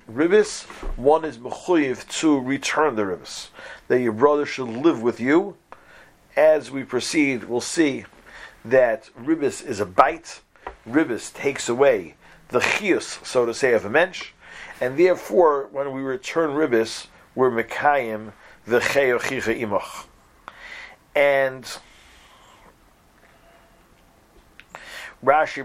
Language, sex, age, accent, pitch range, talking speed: English, male, 50-69, American, 130-170 Hz, 115 wpm